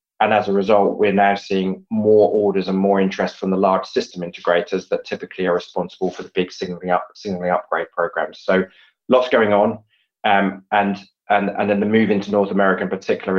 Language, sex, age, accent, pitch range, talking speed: English, male, 20-39, British, 95-110 Hz, 200 wpm